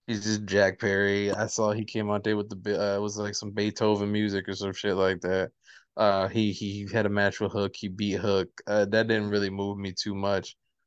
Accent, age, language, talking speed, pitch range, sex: American, 20-39, English, 235 wpm, 100-130 Hz, male